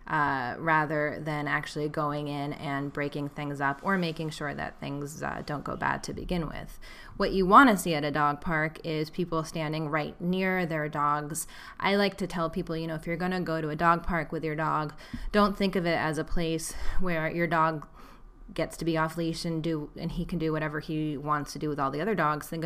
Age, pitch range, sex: 10-29, 155-175 Hz, female